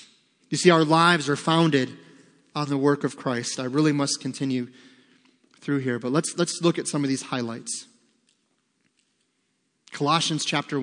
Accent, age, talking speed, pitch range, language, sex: American, 30-49, 155 wpm, 140-185 Hz, English, male